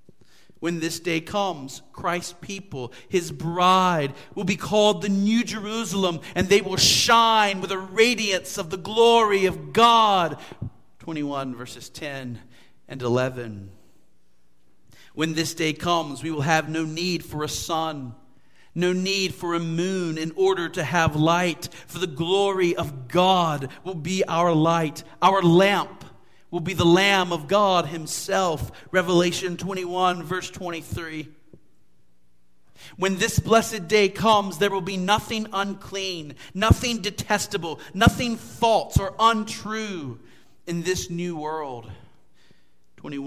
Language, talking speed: English, 135 wpm